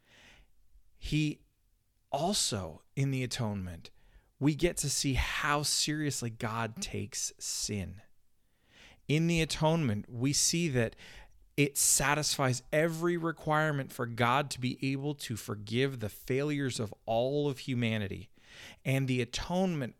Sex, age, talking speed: male, 40-59, 120 wpm